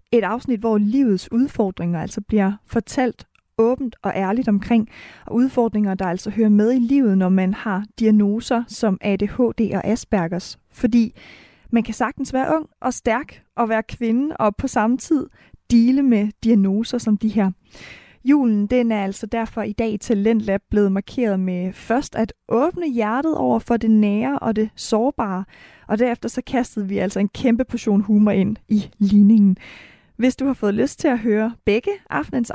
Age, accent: 30-49, native